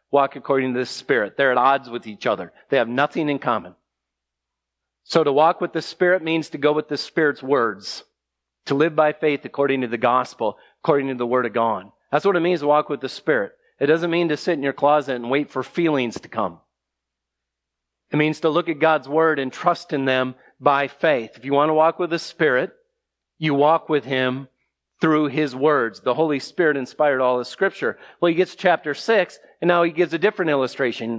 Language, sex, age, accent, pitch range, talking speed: English, male, 40-59, American, 110-170 Hz, 215 wpm